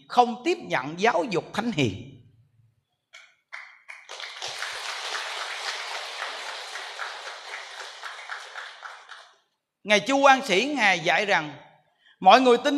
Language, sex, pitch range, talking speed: Vietnamese, male, 170-275 Hz, 80 wpm